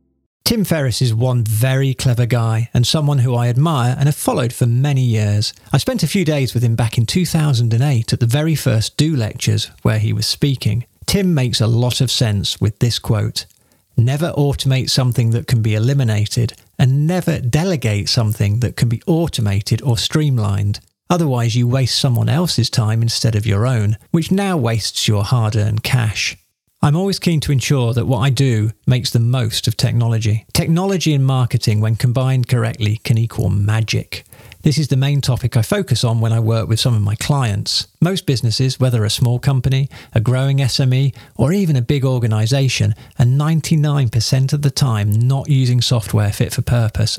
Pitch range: 115-140 Hz